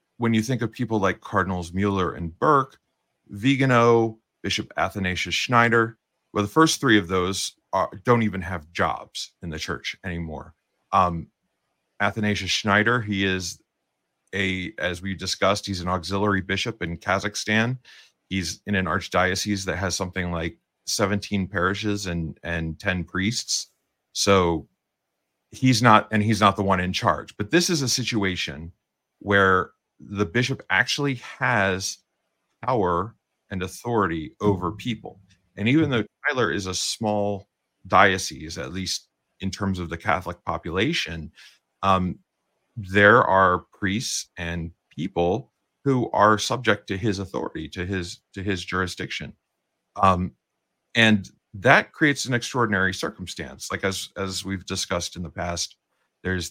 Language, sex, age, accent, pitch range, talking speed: English, male, 30-49, American, 90-110 Hz, 140 wpm